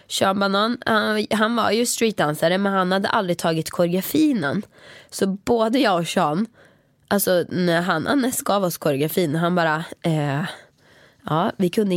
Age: 20-39